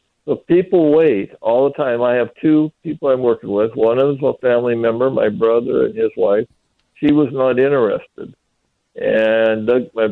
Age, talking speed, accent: 60-79, 185 wpm, American